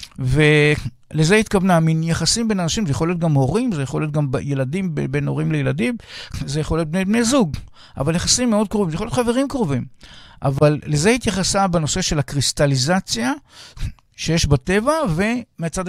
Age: 60-79